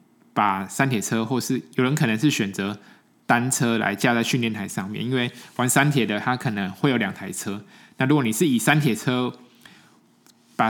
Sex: male